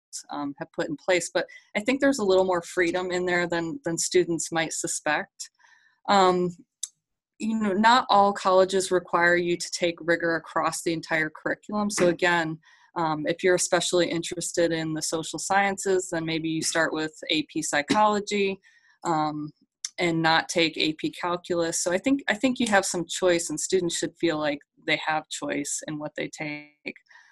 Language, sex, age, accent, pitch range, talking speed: English, female, 20-39, American, 160-195 Hz, 175 wpm